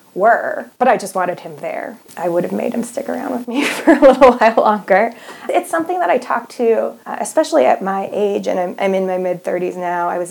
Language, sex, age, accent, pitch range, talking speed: English, female, 20-39, American, 180-220 Hz, 240 wpm